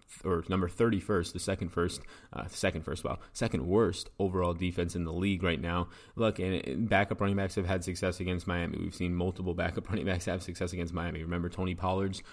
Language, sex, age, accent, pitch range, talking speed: English, male, 20-39, American, 90-100 Hz, 190 wpm